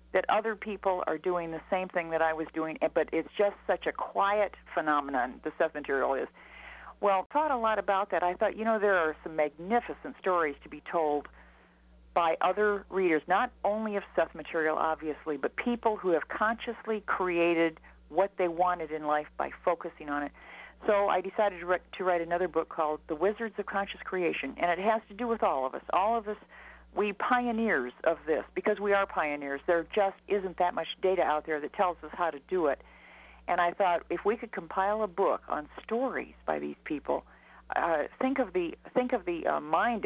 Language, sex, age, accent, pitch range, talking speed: English, female, 50-69, American, 160-215 Hz, 205 wpm